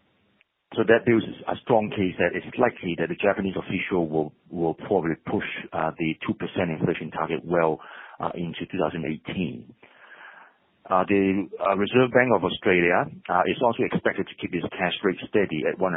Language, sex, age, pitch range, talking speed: English, male, 40-59, 85-100 Hz, 175 wpm